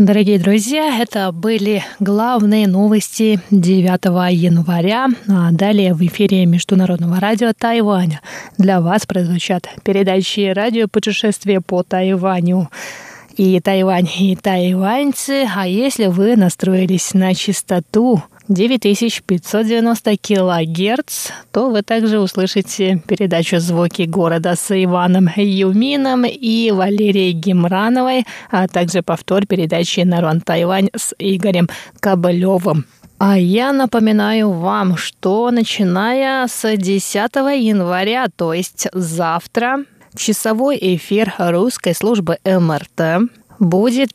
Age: 20-39